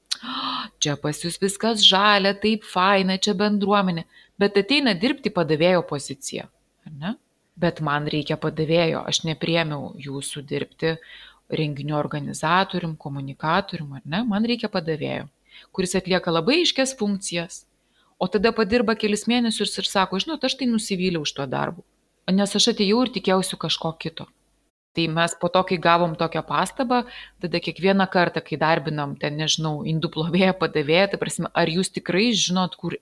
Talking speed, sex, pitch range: 145 wpm, female, 165-210 Hz